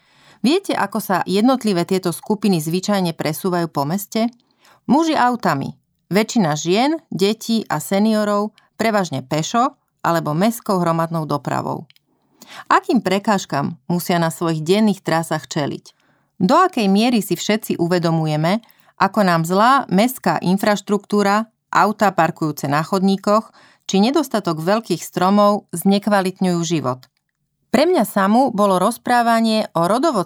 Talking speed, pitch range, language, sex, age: 115 wpm, 175-225 Hz, Slovak, female, 30-49